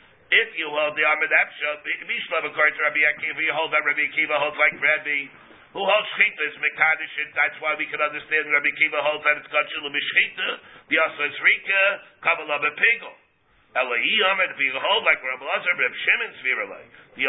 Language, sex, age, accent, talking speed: English, male, 50-69, American, 175 wpm